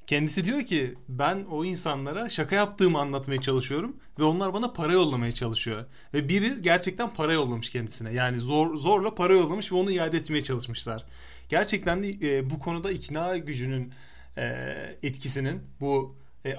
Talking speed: 155 wpm